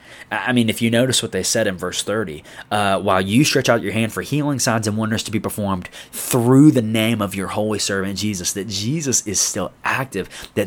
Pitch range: 95-120 Hz